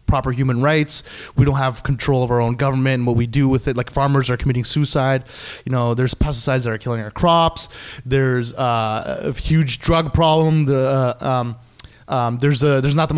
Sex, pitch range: male, 120-155 Hz